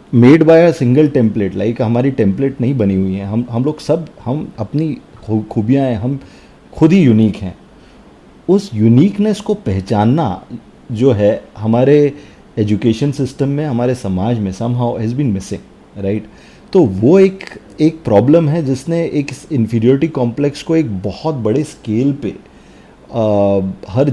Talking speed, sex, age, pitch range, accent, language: 145 wpm, male, 30-49, 110-150 Hz, native, Hindi